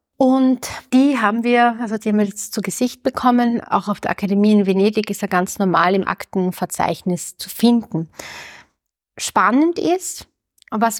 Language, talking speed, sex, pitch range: German, 160 wpm, female, 200-245 Hz